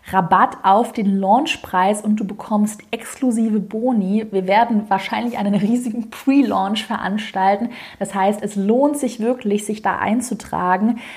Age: 20-39